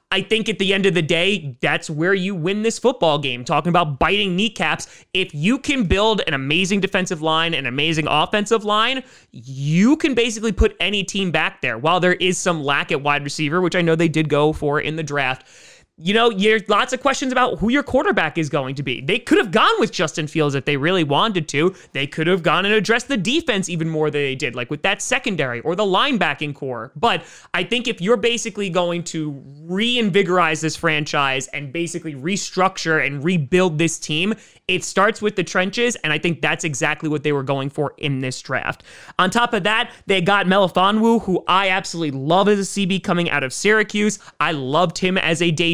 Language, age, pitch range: English, 20-39, 155-210 Hz